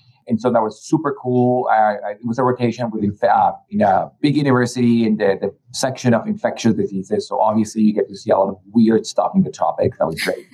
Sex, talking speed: male, 215 wpm